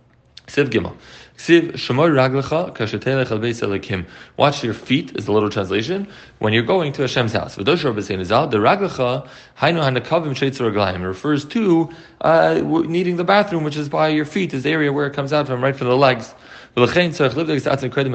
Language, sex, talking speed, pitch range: English, male, 125 wpm, 105-140 Hz